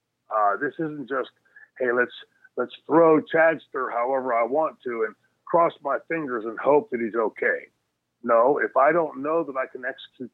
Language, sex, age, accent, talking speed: English, male, 50-69, American, 180 wpm